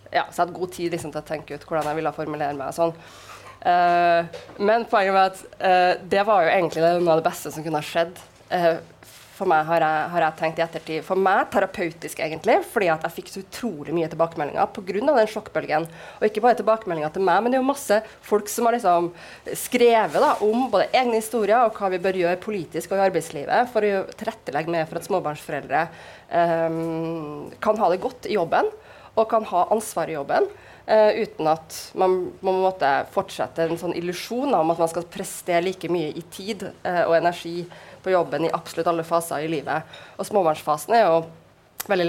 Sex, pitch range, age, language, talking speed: female, 165-210 Hz, 20-39, English, 205 wpm